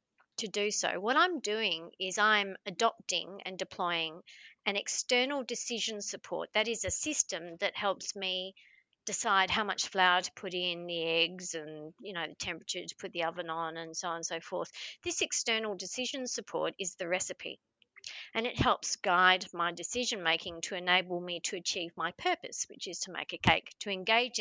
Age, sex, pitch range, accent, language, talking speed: 40-59, female, 180-225 Hz, Australian, English, 185 wpm